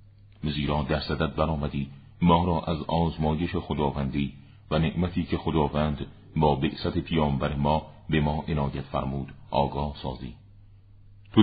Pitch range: 75-95 Hz